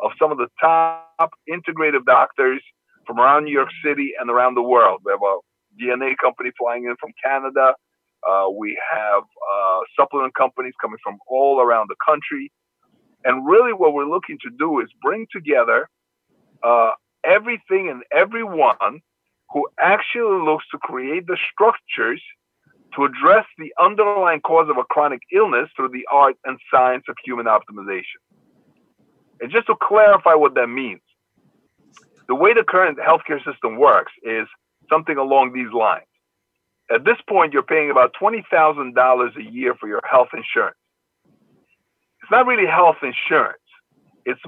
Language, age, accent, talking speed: English, 50-69, American, 150 wpm